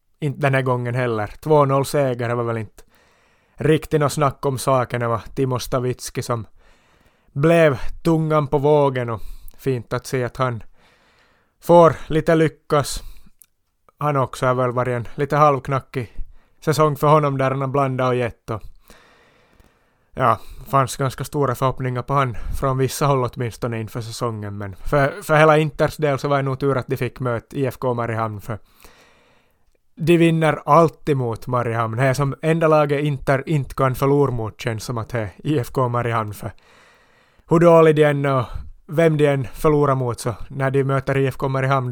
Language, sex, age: Swedish, male, 30-49